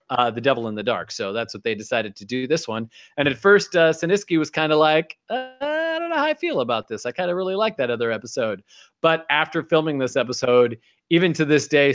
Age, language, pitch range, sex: 30-49, English, 135-185 Hz, male